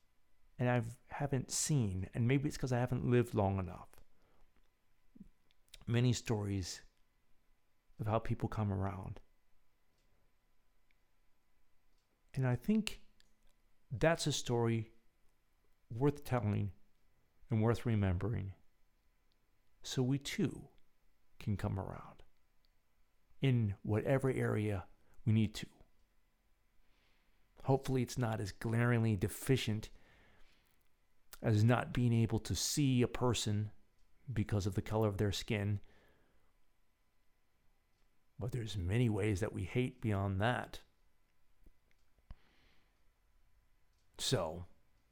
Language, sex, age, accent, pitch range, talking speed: English, male, 50-69, American, 95-120 Hz, 100 wpm